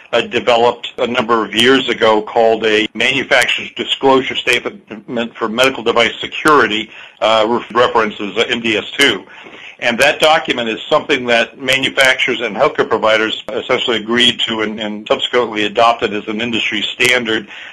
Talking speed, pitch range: 135 wpm, 110-125 Hz